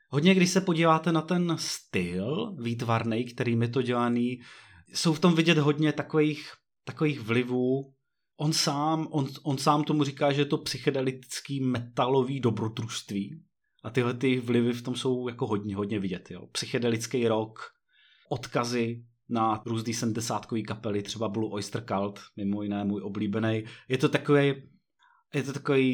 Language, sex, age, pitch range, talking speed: Czech, male, 30-49, 115-135 Hz, 155 wpm